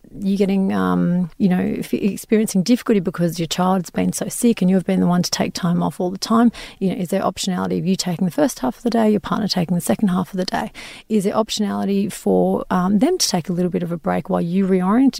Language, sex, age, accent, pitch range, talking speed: English, female, 30-49, Australian, 180-230 Hz, 260 wpm